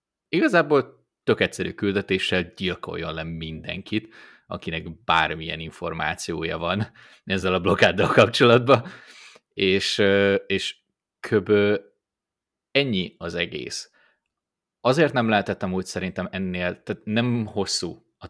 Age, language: 20-39, Hungarian